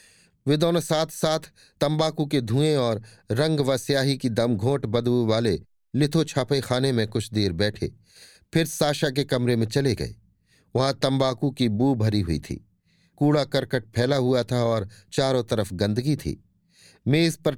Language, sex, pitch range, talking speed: Hindi, male, 110-145 Hz, 165 wpm